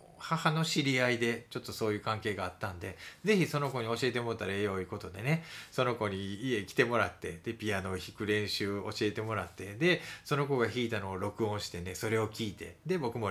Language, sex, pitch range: Japanese, male, 105-155 Hz